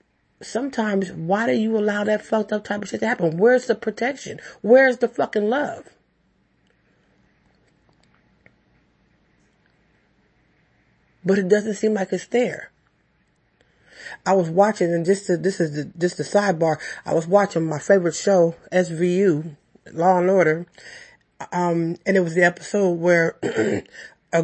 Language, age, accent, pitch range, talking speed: English, 30-49, American, 175-225 Hz, 135 wpm